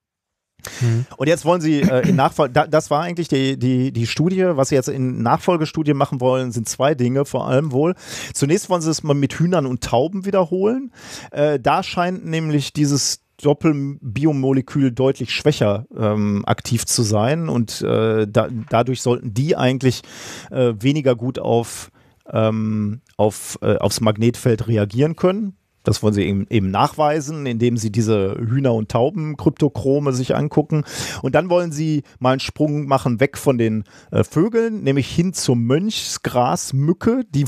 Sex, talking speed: male, 155 wpm